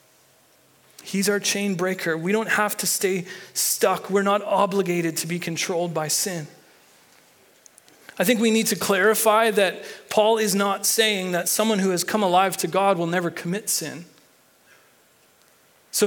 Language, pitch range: English, 175-215 Hz